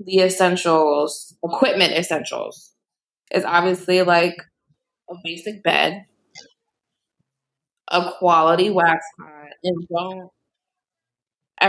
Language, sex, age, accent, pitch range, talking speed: English, female, 20-39, American, 155-185 Hz, 85 wpm